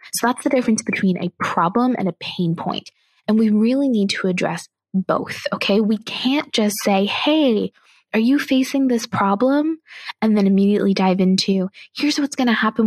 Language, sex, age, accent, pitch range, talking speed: English, female, 20-39, American, 185-240 Hz, 180 wpm